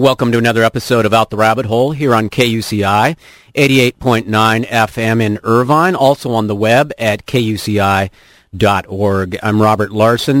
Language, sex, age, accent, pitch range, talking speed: English, male, 40-59, American, 105-130 Hz, 145 wpm